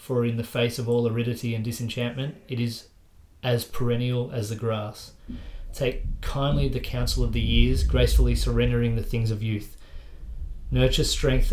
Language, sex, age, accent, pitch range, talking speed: English, male, 30-49, Australian, 110-125 Hz, 160 wpm